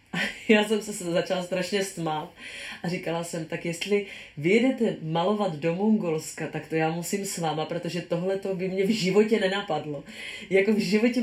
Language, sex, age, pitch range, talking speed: Czech, female, 30-49, 155-185 Hz, 170 wpm